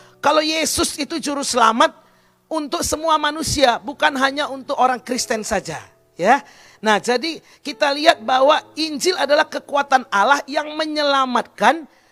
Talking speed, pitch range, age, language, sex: 130 wpm, 210-290 Hz, 40-59, Indonesian, male